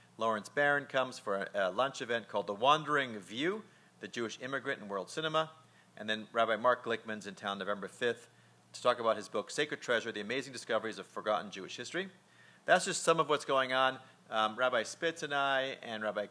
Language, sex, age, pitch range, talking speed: English, male, 40-59, 105-150 Hz, 200 wpm